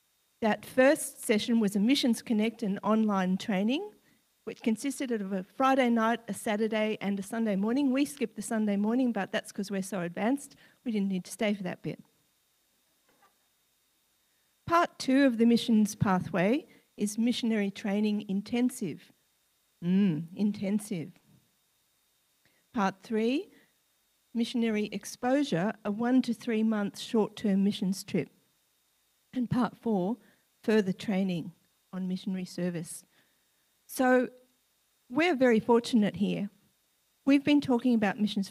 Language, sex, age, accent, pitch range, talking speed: English, female, 50-69, Australian, 200-240 Hz, 130 wpm